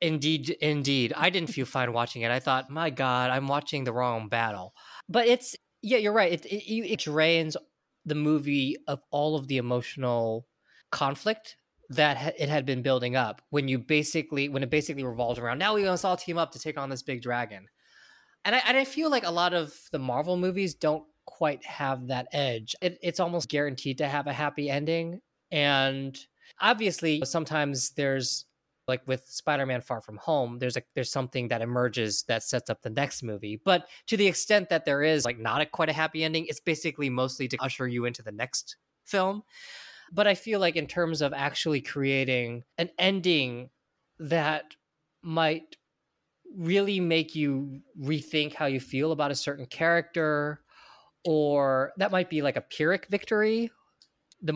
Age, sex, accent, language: 20-39, male, American, English